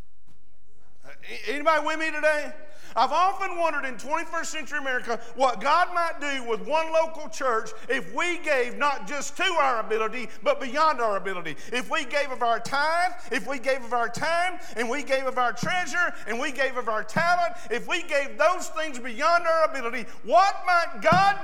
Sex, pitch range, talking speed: male, 175-295 Hz, 185 wpm